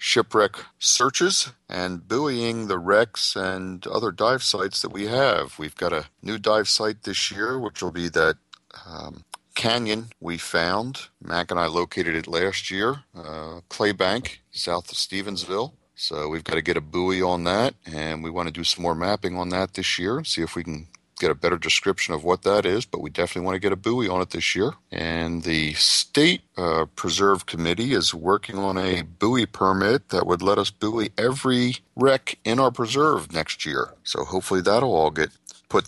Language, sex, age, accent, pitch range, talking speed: English, male, 40-59, American, 85-110 Hz, 195 wpm